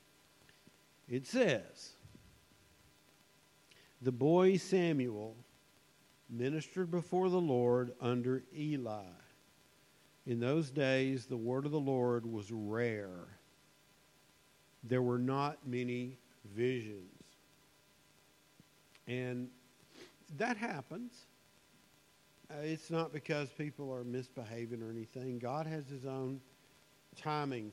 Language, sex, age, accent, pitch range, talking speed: English, male, 50-69, American, 120-150 Hz, 90 wpm